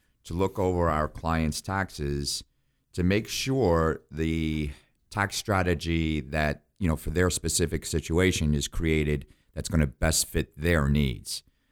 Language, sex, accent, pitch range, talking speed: English, male, American, 75-90 Hz, 145 wpm